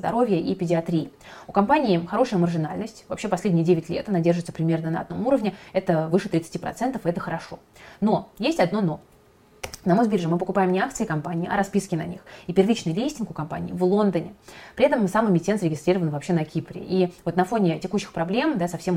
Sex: female